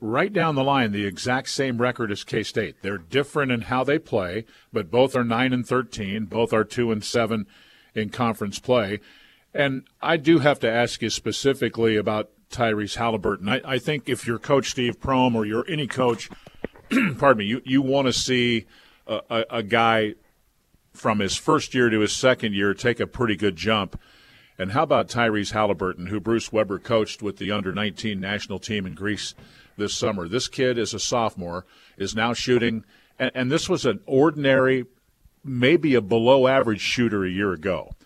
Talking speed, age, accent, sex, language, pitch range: 185 wpm, 50-69, American, male, English, 105-130 Hz